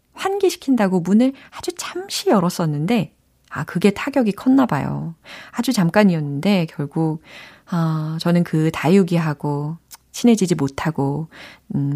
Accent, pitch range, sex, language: native, 155-235 Hz, female, Korean